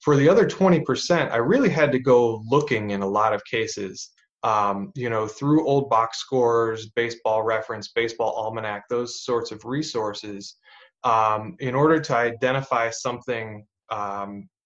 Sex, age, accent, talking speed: male, 20-39, American, 150 wpm